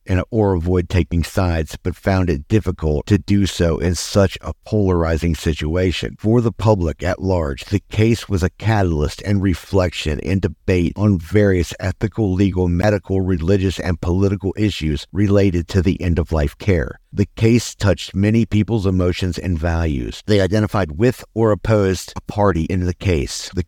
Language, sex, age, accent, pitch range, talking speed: English, male, 50-69, American, 85-100 Hz, 160 wpm